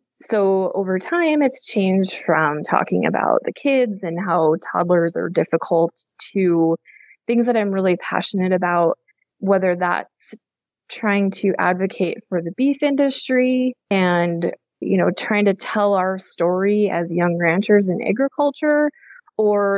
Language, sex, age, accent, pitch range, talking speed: English, female, 20-39, American, 180-225 Hz, 135 wpm